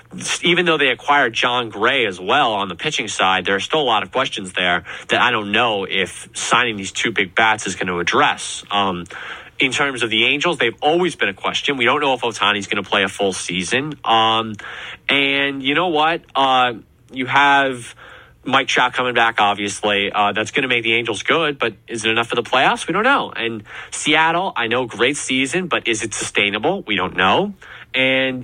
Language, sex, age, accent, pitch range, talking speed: English, male, 20-39, American, 115-165 Hz, 215 wpm